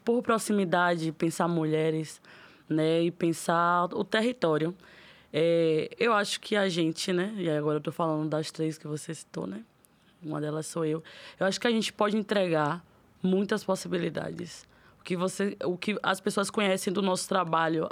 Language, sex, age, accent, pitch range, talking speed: Portuguese, female, 20-39, Brazilian, 160-195 Hz, 170 wpm